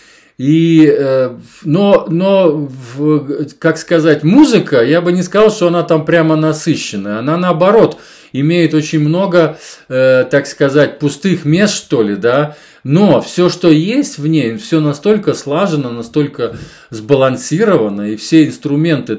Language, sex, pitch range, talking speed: Russian, male, 110-160 Hz, 130 wpm